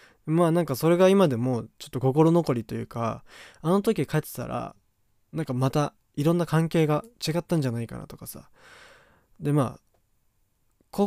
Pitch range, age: 120-150 Hz, 20-39